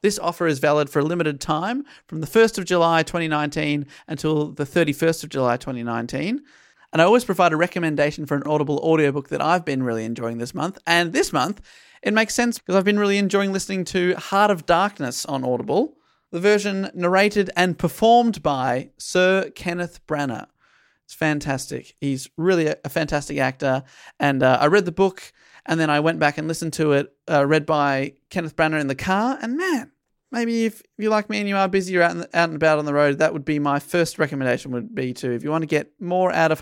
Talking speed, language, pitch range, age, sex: 210 wpm, English, 150-205 Hz, 30-49, male